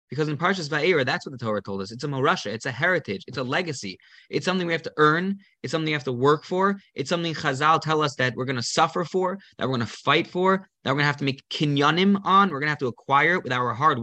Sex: male